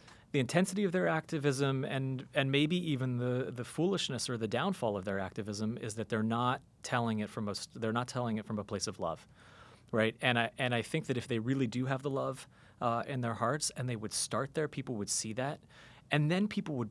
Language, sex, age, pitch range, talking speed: English, male, 30-49, 105-140 Hz, 235 wpm